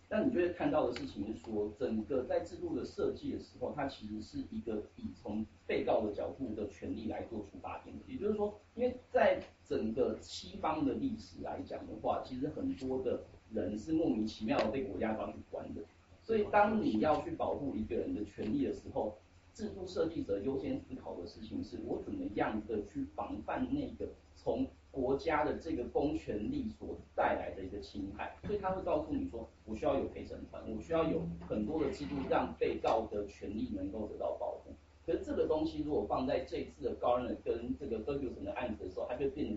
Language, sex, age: Chinese, male, 40-59